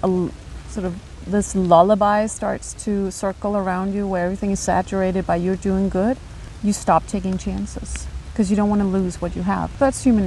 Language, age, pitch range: English, 40-59, 180-225 Hz